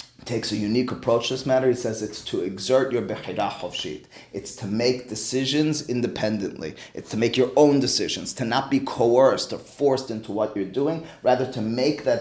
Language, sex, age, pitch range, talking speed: English, male, 30-49, 110-135 Hz, 190 wpm